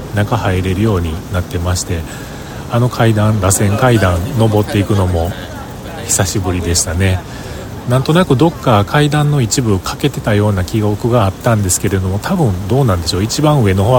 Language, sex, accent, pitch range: Japanese, male, native, 95-120 Hz